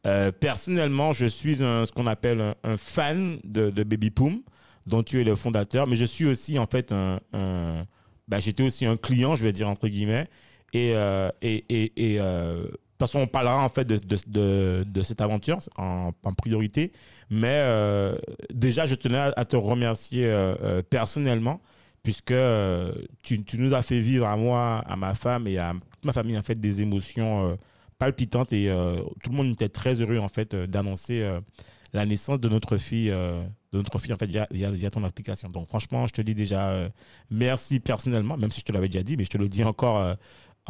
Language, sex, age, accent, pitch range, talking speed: French, male, 30-49, French, 100-125 Hz, 210 wpm